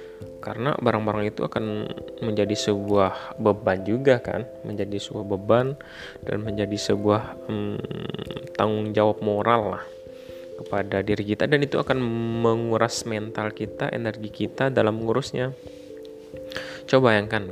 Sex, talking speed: male, 120 wpm